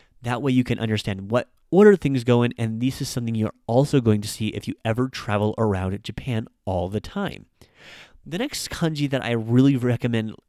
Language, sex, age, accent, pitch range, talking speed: English, male, 30-49, American, 110-140 Hz, 200 wpm